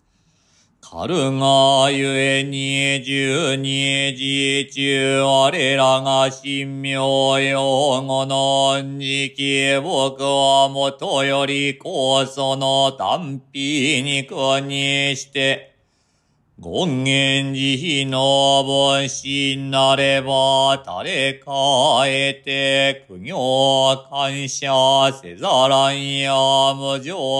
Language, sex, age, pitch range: Japanese, male, 40-59, 135-140 Hz